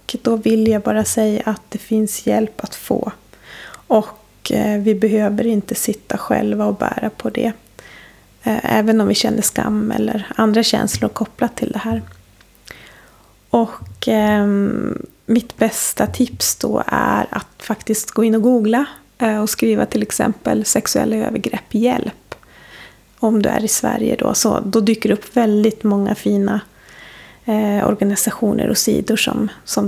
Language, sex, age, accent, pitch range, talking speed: Swedish, female, 30-49, native, 210-235 Hz, 145 wpm